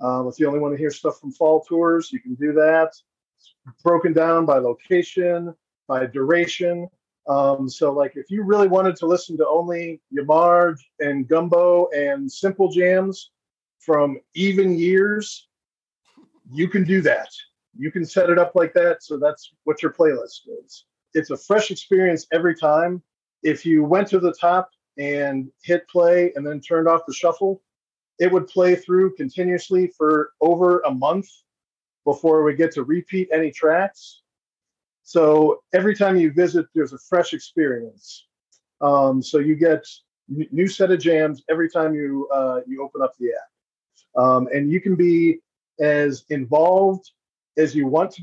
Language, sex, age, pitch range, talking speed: English, male, 40-59, 150-180 Hz, 165 wpm